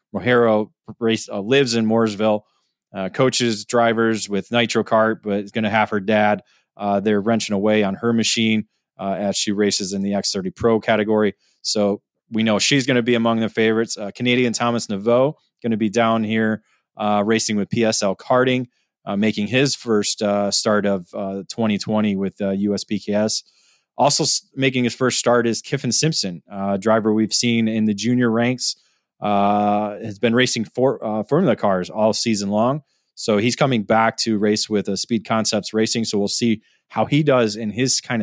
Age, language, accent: 20-39, English, American